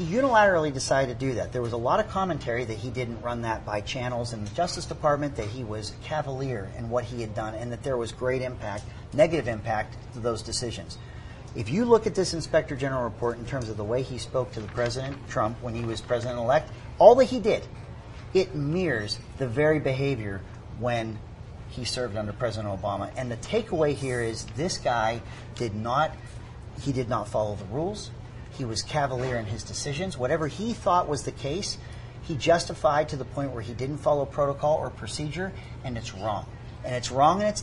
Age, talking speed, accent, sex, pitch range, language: 40-59, 205 wpm, American, male, 115-150 Hz, English